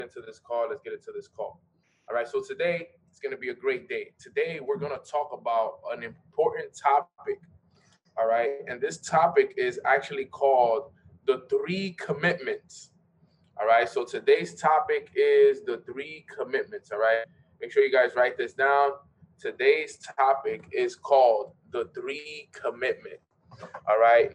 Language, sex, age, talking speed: English, male, 20-39, 165 wpm